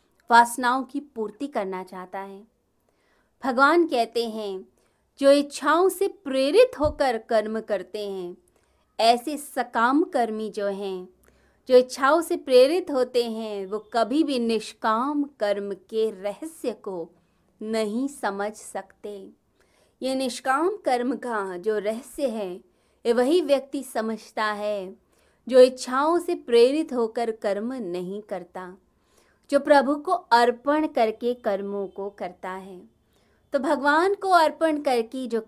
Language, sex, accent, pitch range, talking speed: Hindi, female, native, 200-270 Hz, 125 wpm